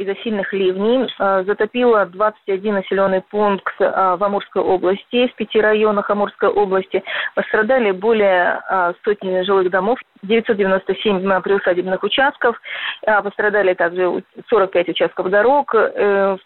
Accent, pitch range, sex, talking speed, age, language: native, 190-220 Hz, female, 105 wpm, 30-49, Russian